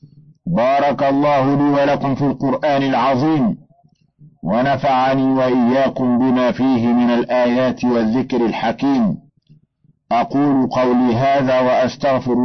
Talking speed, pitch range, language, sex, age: 90 wpm, 120-150 Hz, Arabic, male, 50-69